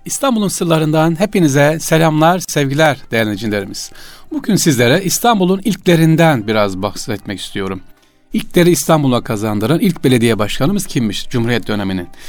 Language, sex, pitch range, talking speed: Turkish, male, 110-160 Hz, 105 wpm